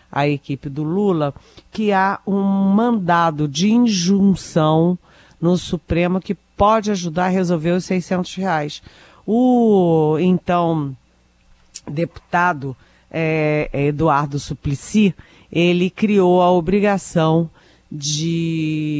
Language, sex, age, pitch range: Portuguese, female, 40-59, 145-190 Hz